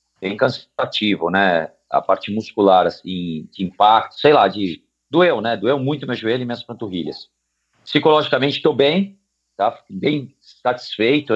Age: 50-69